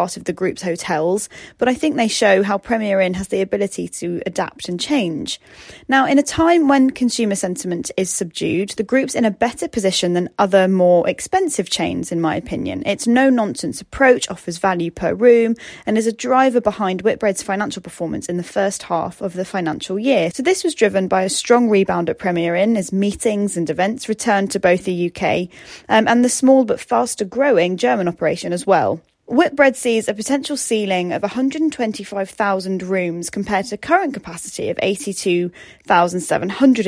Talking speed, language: 180 wpm, English